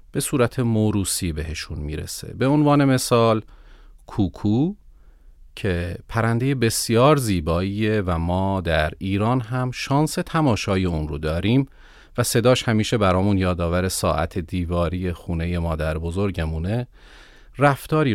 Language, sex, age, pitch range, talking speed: Persian, male, 40-59, 85-125 Hz, 110 wpm